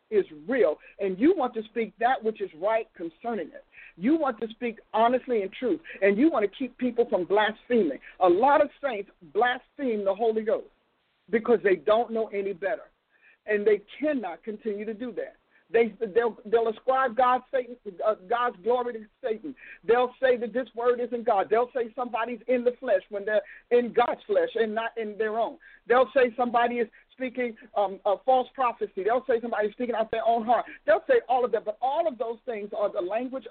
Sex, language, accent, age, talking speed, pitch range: male, English, American, 50-69, 205 wpm, 220-260 Hz